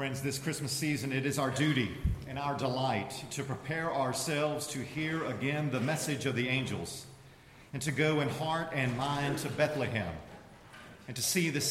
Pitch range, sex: 130-150 Hz, male